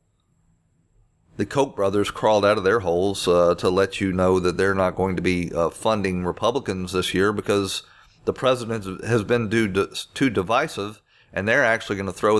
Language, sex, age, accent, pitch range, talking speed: English, male, 40-59, American, 90-110 Hz, 190 wpm